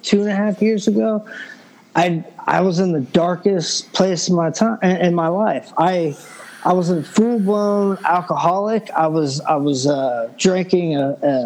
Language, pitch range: English, 150-190 Hz